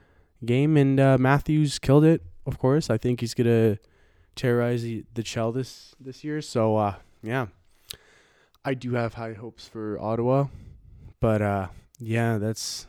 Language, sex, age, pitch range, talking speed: English, male, 20-39, 100-120 Hz, 160 wpm